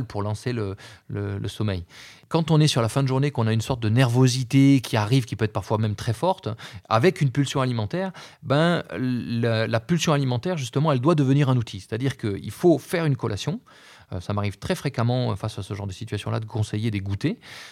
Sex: male